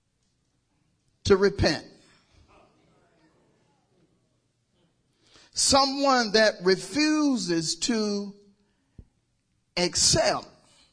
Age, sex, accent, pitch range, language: 40-59, male, American, 165-225 Hz, English